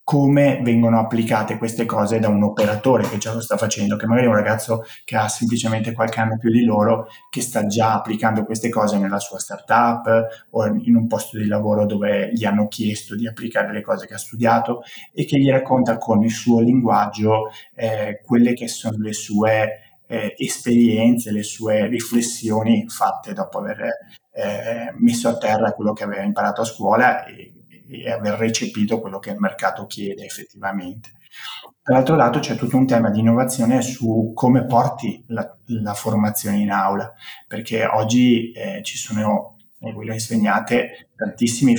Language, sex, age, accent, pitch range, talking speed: Italian, male, 20-39, native, 105-120 Hz, 170 wpm